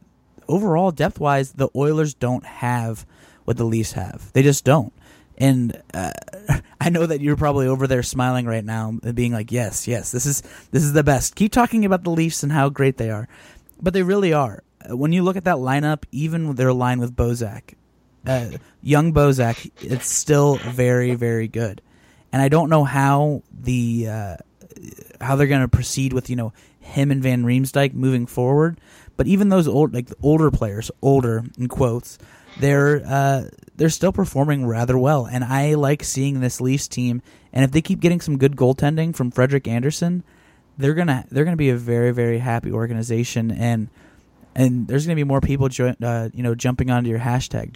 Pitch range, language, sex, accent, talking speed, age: 120-145 Hz, English, male, American, 190 wpm, 20-39